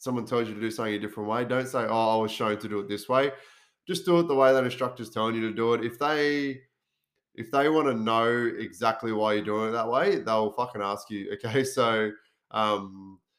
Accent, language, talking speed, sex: Australian, English, 240 wpm, male